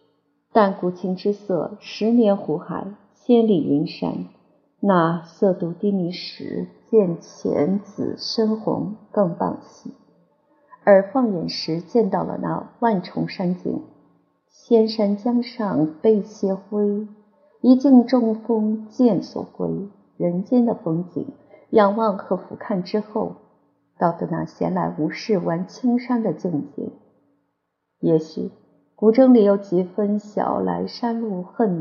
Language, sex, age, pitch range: Chinese, female, 50-69, 180-225 Hz